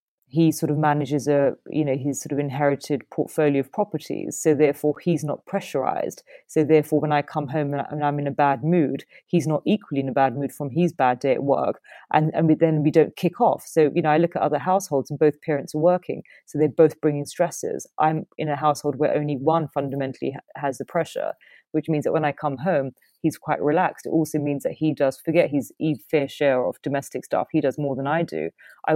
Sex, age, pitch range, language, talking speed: female, 30-49, 140-160 Hz, English, 230 wpm